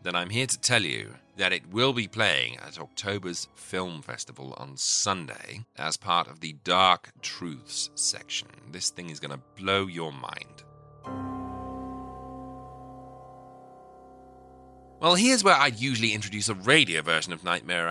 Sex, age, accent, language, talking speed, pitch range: male, 30-49, British, English, 145 wpm, 85-130 Hz